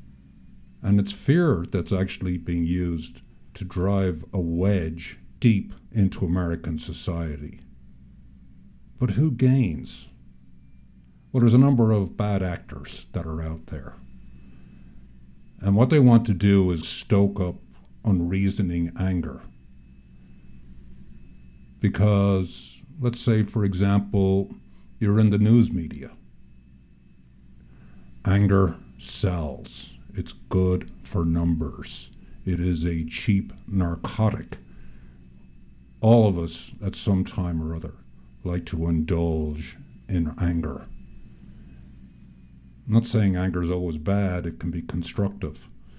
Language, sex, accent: English, male, American